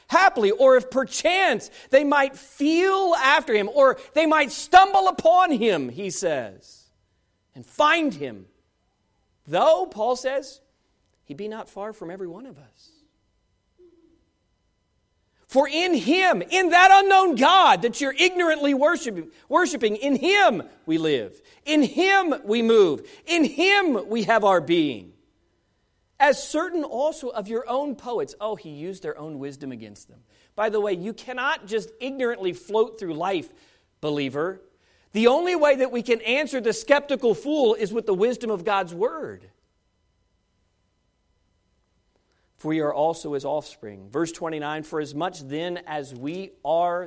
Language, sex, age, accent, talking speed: English, male, 40-59, American, 150 wpm